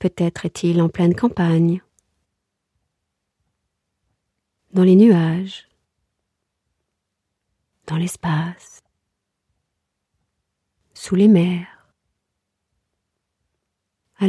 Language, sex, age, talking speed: French, female, 40-59, 60 wpm